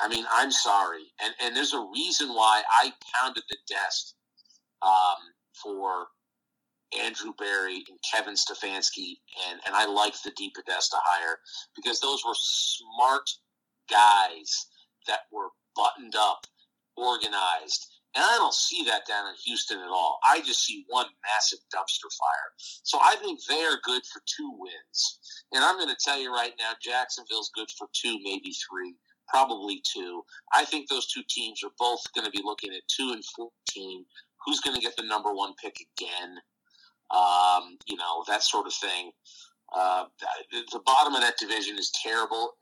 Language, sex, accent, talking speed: English, male, American, 170 wpm